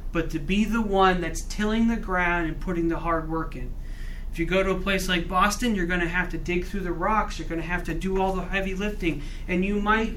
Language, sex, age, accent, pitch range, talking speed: English, male, 40-59, American, 145-190 Hz, 265 wpm